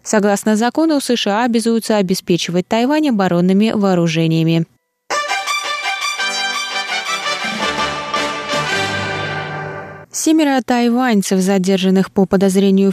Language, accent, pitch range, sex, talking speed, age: Russian, native, 185-240 Hz, female, 60 wpm, 20-39